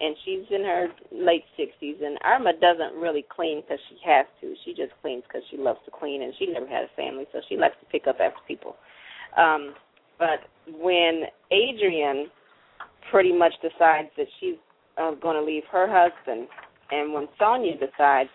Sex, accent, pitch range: female, American, 140-185 Hz